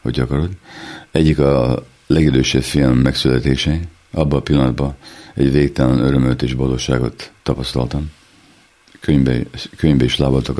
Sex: male